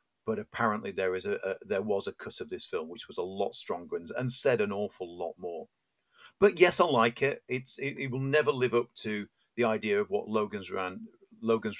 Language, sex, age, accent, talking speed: English, male, 50-69, British, 225 wpm